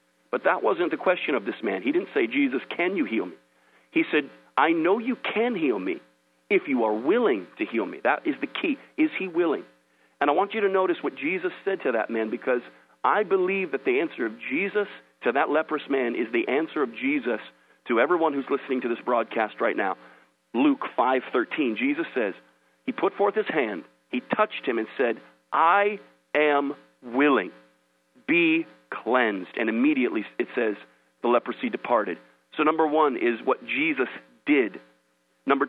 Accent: American